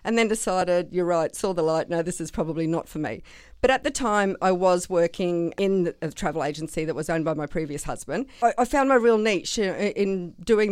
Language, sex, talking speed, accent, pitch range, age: English, female, 225 wpm, Australian, 170-200 Hz, 50-69